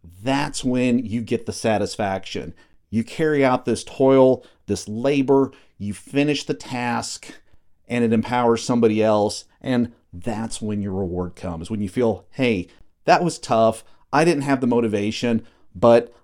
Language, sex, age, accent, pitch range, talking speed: English, male, 40-59, American, 105-130 Hz, 150 wpm